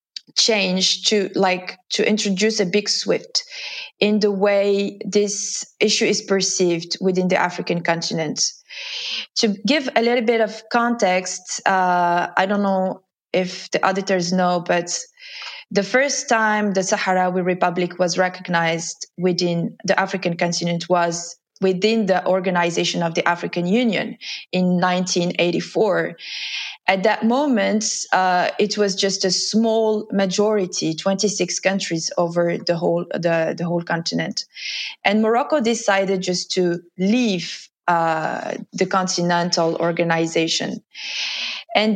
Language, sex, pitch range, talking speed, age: Swedish, female, 180-215 Hz, 125 wpm, 20-39